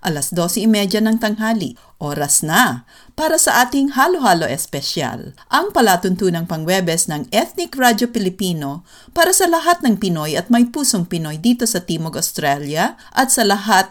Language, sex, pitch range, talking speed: English, female, 170-240 Hz, 145 wpm